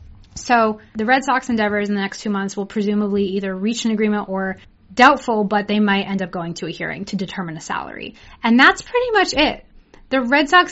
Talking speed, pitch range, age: 220 wpm, 200-255 Hz, 20-39